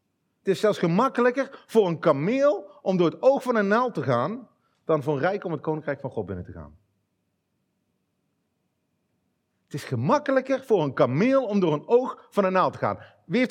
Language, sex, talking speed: Dutch, male, 200 wpm